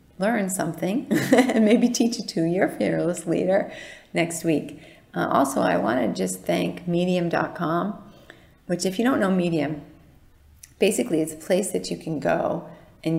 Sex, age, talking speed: female, 40-59, 160 wpm